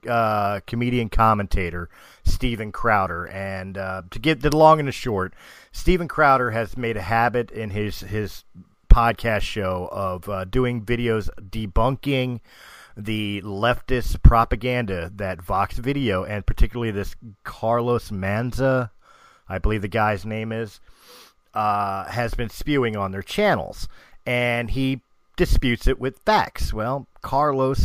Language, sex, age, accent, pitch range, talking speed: English, male, 40-59, American, 100-125 Hz, 135 wpm